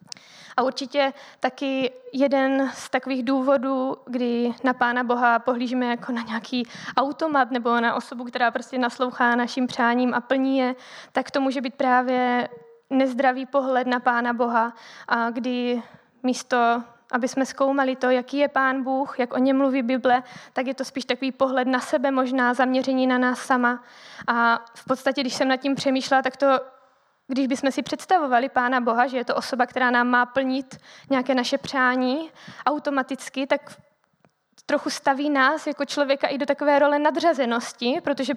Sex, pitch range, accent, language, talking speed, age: female, 245-270 Hz, native, Czech, 165 wpm, 20-39